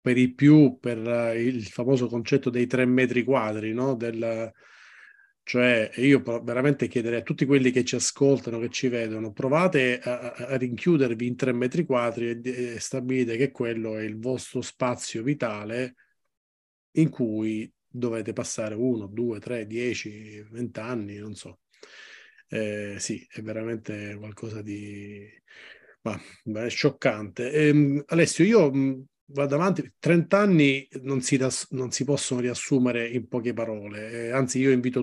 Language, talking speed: Italian, 145 wpm